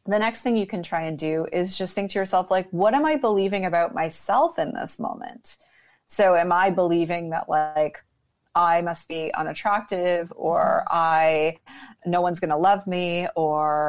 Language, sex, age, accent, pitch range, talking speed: English, female, 30-49, American, 160-190 Hz, 180 wpm